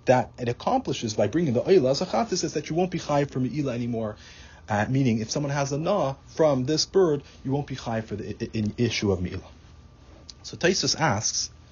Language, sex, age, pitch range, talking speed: English, male, 30-49, 110-155 Hz, 210 wpm